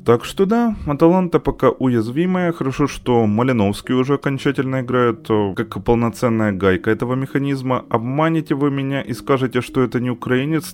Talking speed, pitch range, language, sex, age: 145 wpm, 110-150 Hz, Ukrainian, male, 20-39